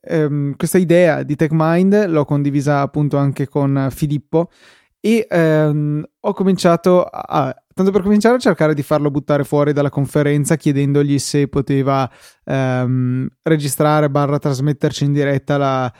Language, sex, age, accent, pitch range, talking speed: Italian, male, 20-39, native, 140-160 Hz, 140 wpm